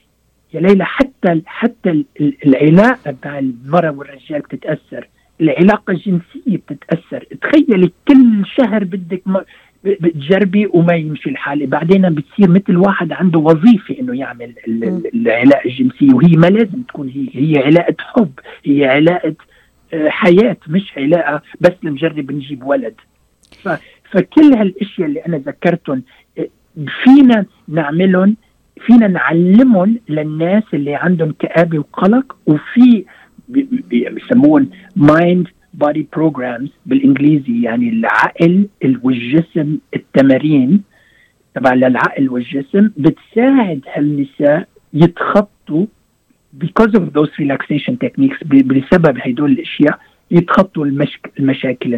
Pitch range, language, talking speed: 145-215 Hz, Arabic, 100 wpm